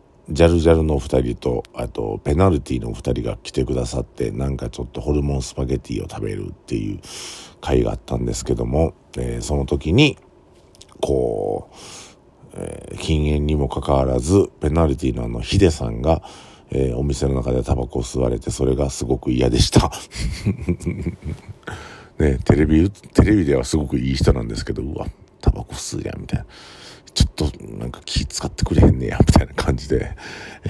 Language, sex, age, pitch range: Japanese, male, 50-69, 65-85 Hz